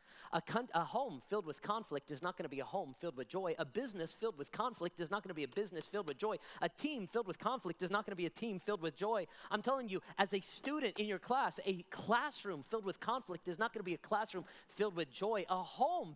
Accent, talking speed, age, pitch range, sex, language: American, 265 wpm, 30-49, 160-210 Hz, male, English